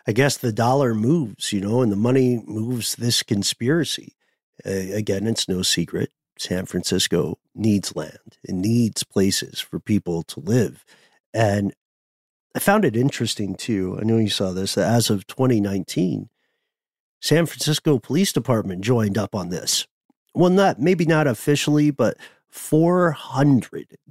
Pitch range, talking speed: 110-145 Hz, 150 wpm